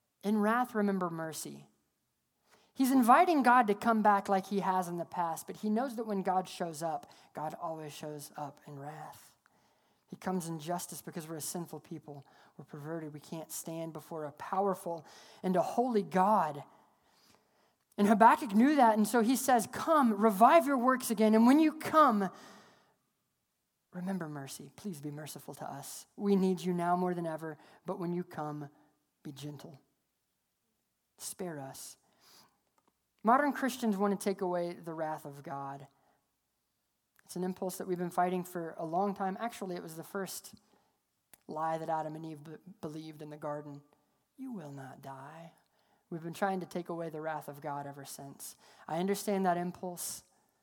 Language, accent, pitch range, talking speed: English, American, 160-205 Hz, 170 wpm